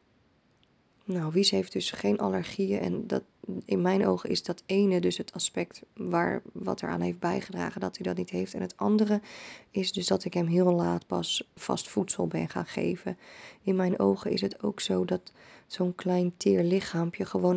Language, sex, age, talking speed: Dutch, female, 20-39, 185 wpm